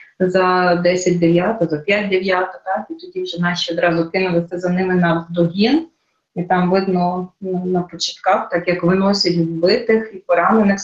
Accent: native